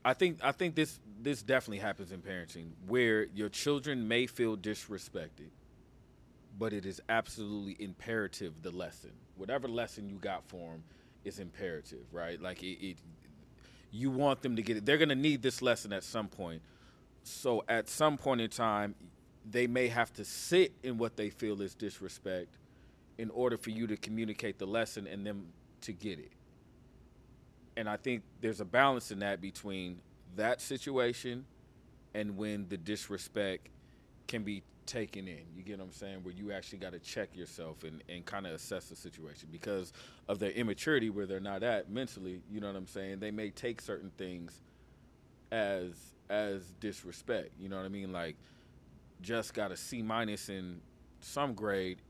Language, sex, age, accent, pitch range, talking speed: English, male, 40-59, American, 95-120 Hz, 175 wpm